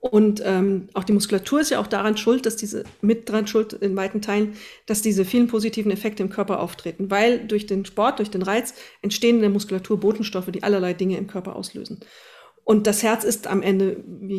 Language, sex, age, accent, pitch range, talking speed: German, female, 40-59, German, 200-240 Hz, 215 wpm